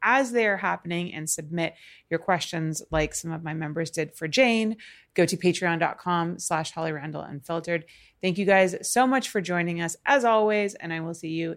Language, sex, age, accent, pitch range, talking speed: English, female, 30-49, American, 155-220 Hz, 180 wpm